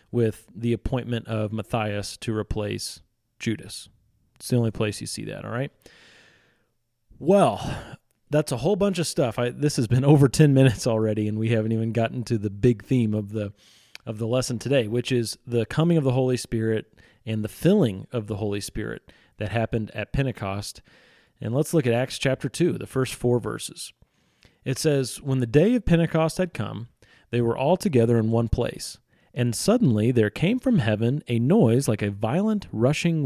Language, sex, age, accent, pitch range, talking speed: English, male, 30-49, American, 110-140 Hz, 190 wpm